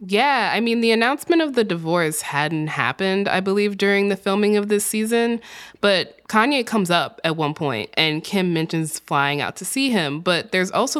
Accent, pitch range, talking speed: American, 155-215 Hz, 195 wpm